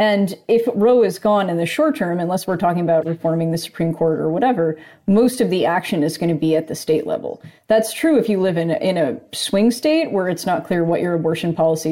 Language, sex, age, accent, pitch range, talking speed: English, female, 30-49, American, 165-200 Hz, 245 wpm